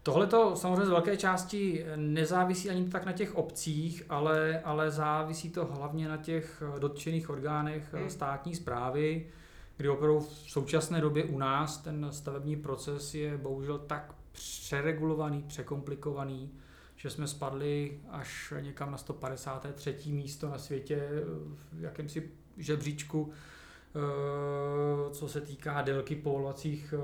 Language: Czech